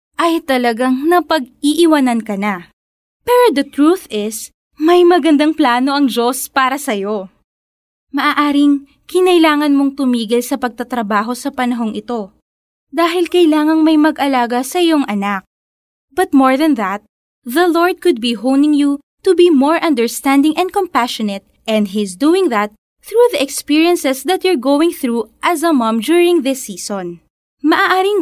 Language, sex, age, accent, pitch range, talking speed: Filipino, female, 20-39, native, 230-330 Hz, 140 wpm